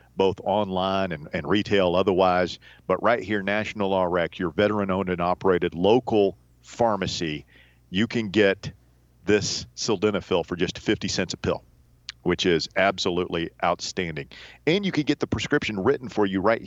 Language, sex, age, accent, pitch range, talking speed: English, male, 40-59, American, 90-115 Hz, 155 wpm